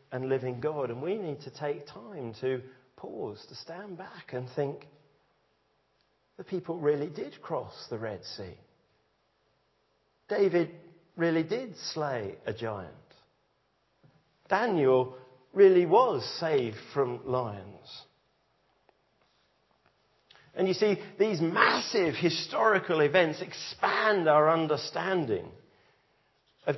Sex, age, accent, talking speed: male, 40-59, British, 105 wpm